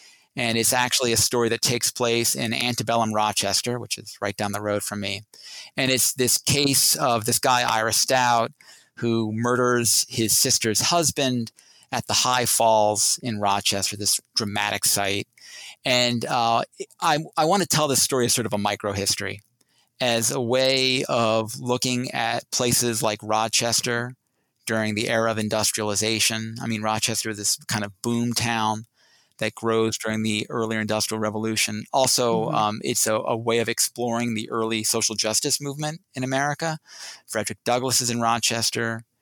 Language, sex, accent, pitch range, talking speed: English, male, American, 110-125 Hz, 160 wpm